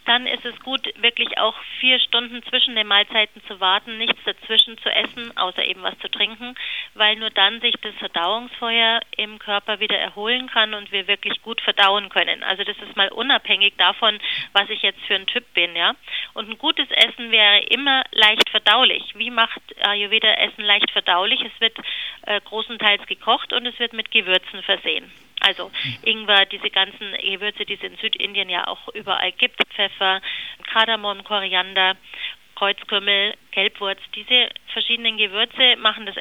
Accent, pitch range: German, 200-235 Hz